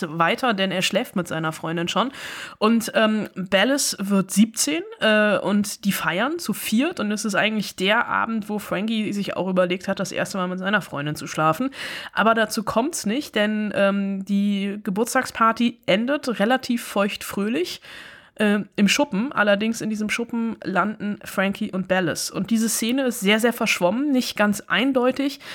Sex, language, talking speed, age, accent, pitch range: female, German, 170 wpm, 20-39, German, 185-230 Hz